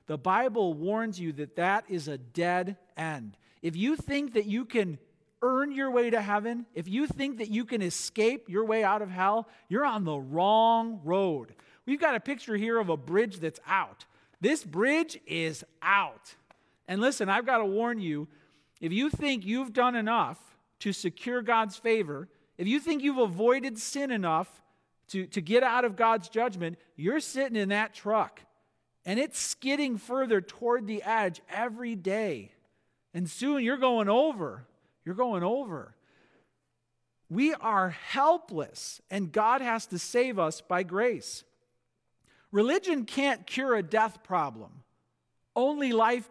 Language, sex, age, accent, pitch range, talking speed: English, male, 40-59, American, 175-245 Hz, 160 wpm